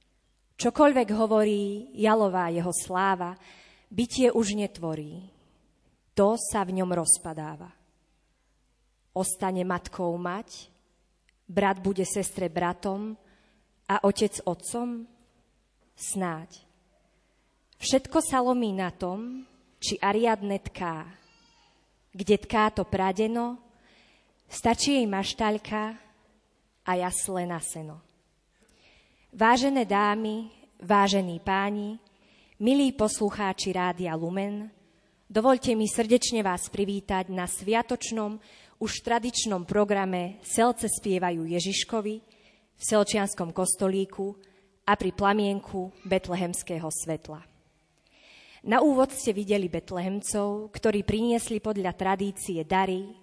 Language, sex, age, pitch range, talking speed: Slovak, female, 20-39, 180-215 Hz, 90 wpm